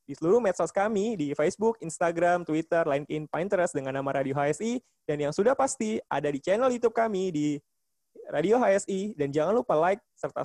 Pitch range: 150-200 Hz